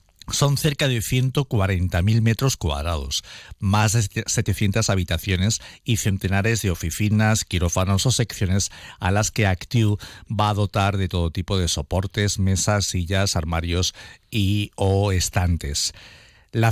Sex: male